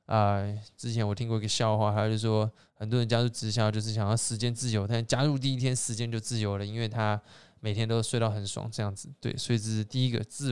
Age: 20-39